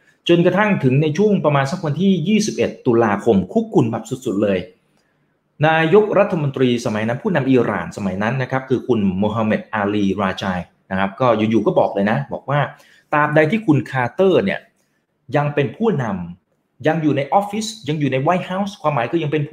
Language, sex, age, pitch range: Thai, male, 30-49, 120-180 Hz